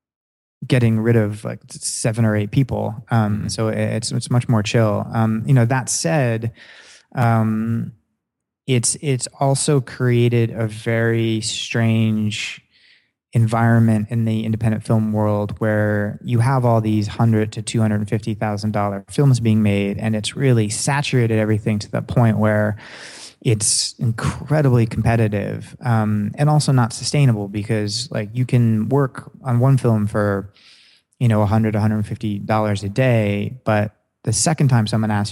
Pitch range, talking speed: 105-120 Hz, 155 wpm